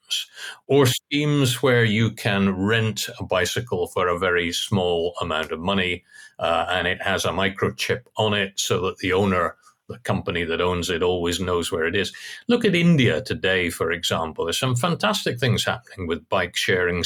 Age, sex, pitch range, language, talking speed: 50-69, male, 100-130 Hz, English, 180 wpm